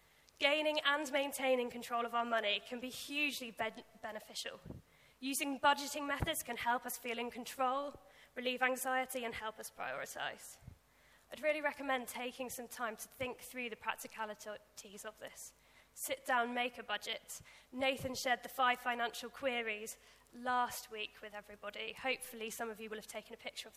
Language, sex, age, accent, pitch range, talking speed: English, female, 10-29, British, 225-270 Hz, 160 wpm